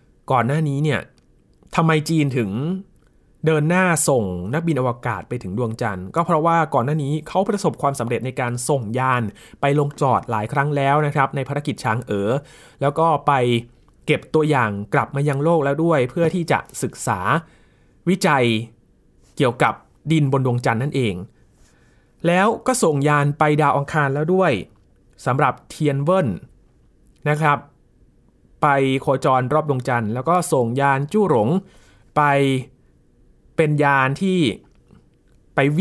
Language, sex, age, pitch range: Thai, male, 20-39, 120-155 Hz